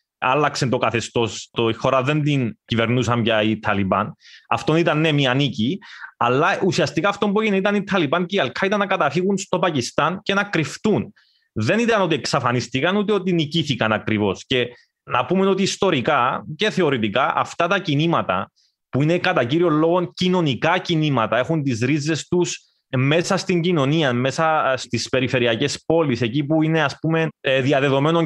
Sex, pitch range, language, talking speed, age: male, 135-190 Hz, Greek, 155 wpm, 20-39